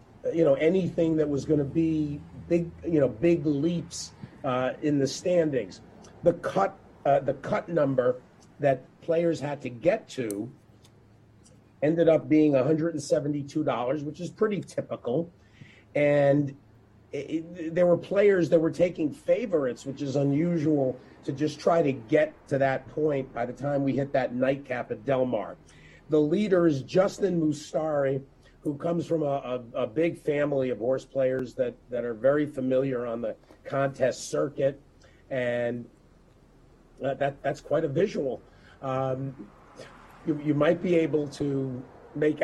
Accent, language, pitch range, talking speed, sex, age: American, English, 135-165 Hz, 150 wpm, male, 40-59